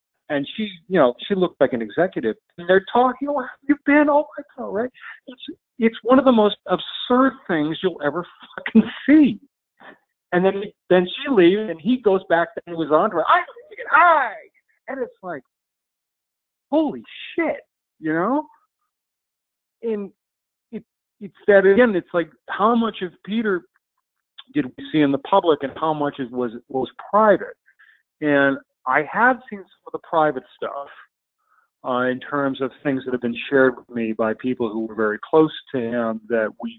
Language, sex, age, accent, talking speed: English, male, 50-69, American, 180 wpm